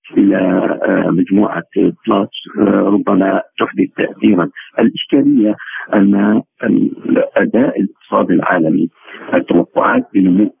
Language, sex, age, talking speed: Arabic, male, 50-69, 75 wpm